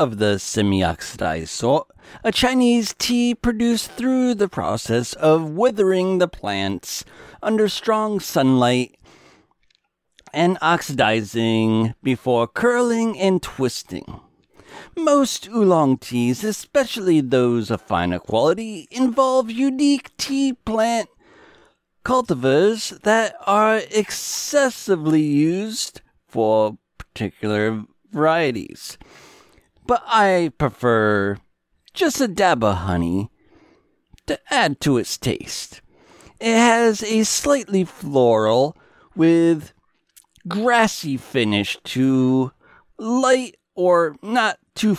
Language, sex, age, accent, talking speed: English, male, 40-59, American, 95 wpm